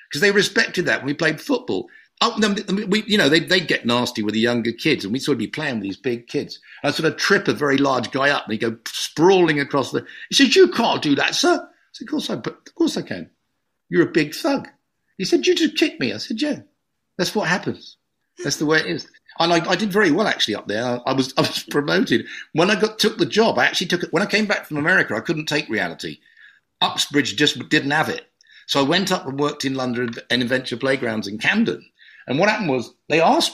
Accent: British